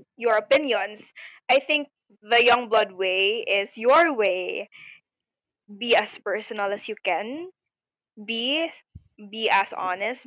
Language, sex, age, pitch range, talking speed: English, female, 20-39, 210-275 Hz, 125 wpm